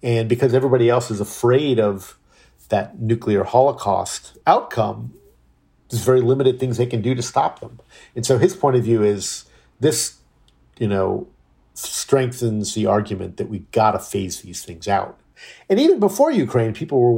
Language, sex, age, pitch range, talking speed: English, male, 50-69, 100-125 Hz, 165 wpm